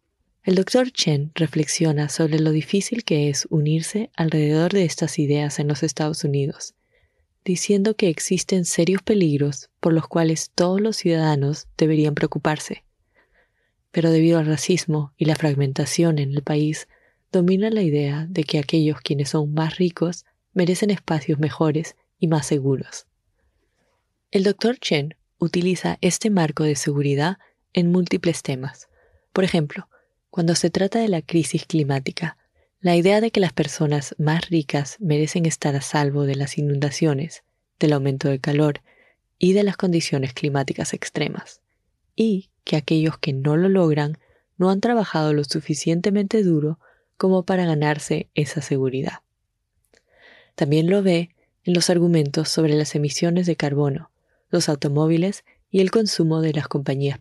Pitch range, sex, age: 150-180 Hz, female, 20-39